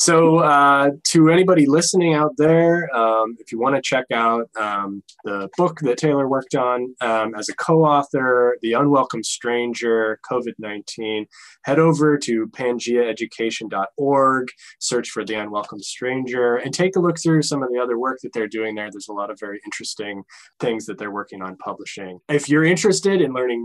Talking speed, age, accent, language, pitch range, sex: 175 wpm, 20-39, American, English, 115-150 Hz, male